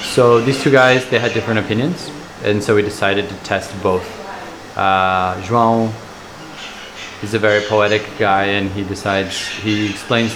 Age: 20-39